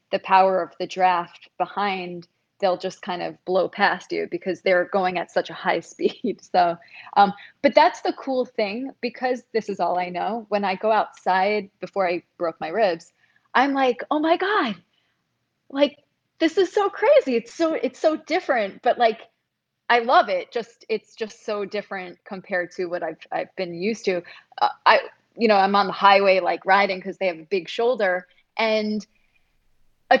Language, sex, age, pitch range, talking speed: English, female, 20-39, 190-265 Hz, 185 wpm